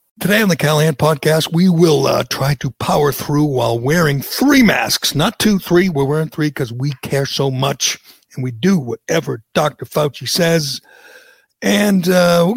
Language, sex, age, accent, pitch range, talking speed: English, male, 60-79, American, 140-185 Hz, 175 wpm